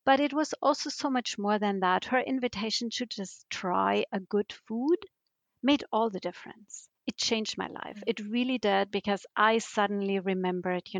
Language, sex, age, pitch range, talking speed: English, female, 50-69, 190-230 Hz, 180 wpm